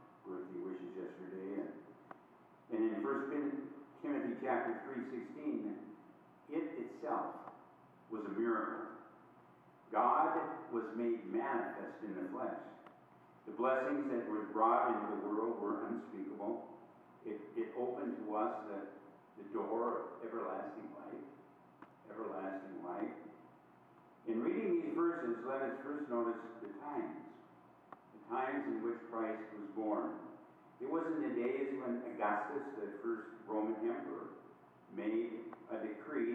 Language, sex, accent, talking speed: English, male, American, 125 wpm